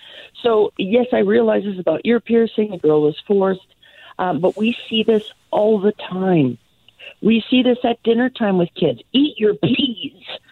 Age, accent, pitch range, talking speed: 50-69, American, 155-215 Hz, 175 wpm